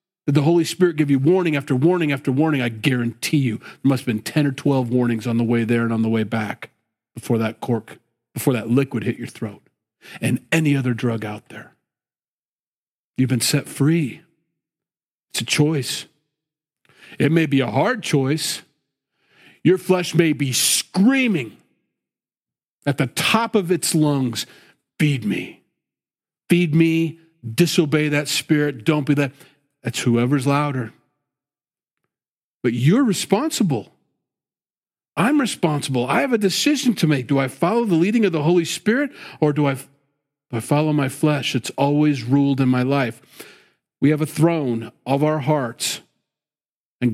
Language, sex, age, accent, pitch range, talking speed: English, male, 40-59, American, 125-160 Hz, 160 wpm